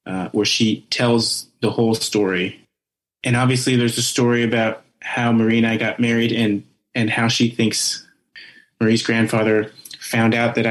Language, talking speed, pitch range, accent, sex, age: English, 165 wpm, 110-125 Hz, American, male, 30-49